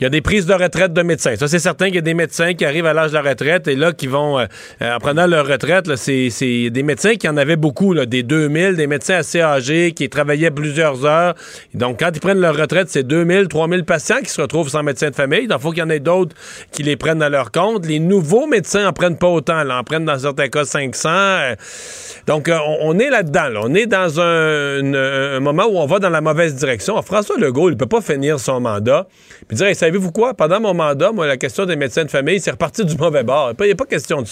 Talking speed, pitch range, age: 275 wpm, 145-185 Hz, 40-59